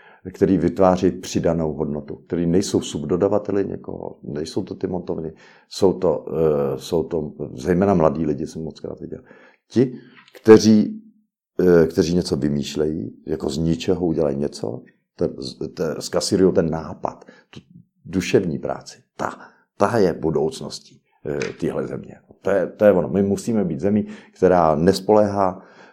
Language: Czech